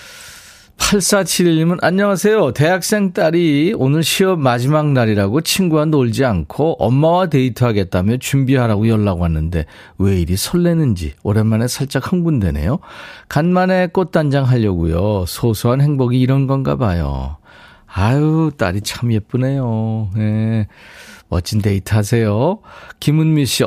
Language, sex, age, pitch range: Korean, male, 40-59, 105-155 Hz